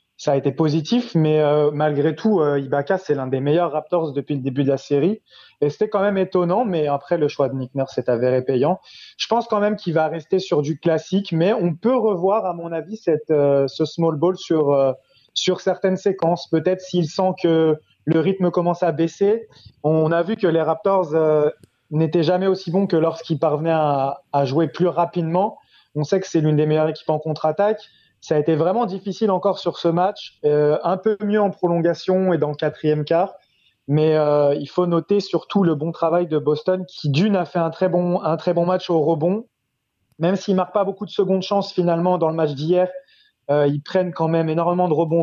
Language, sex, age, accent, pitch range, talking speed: French, male, 30-49, French, 150-185 Hz, 220 wpm